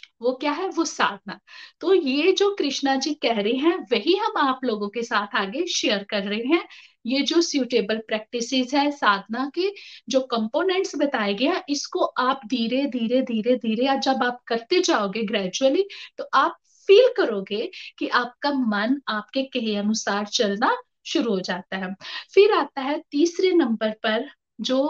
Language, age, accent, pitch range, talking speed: Hindi, 50-69, native, 230-360 Hz, 165 wpm